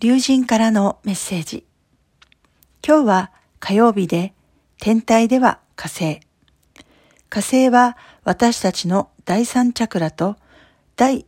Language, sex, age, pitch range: Japanese, female, 50-69, 175-240 Hz